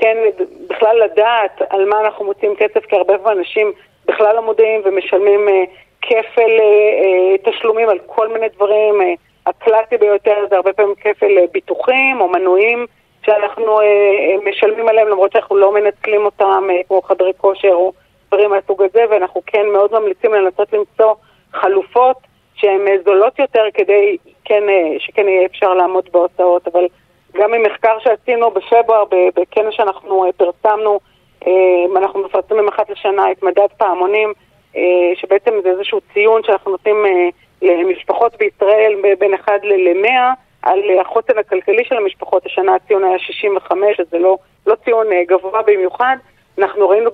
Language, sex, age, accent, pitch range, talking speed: Hebrew, female, 40-59, native, 190-220 Hz, 150 wpm